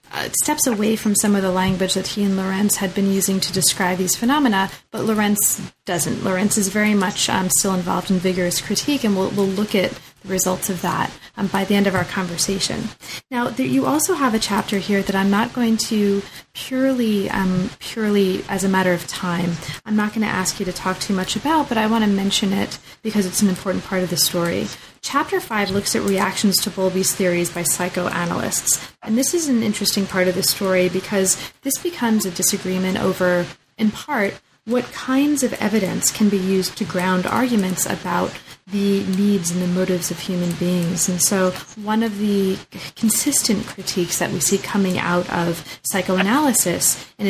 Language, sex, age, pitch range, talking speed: English, female, 30-49, 185-215 Hz, 195 wpm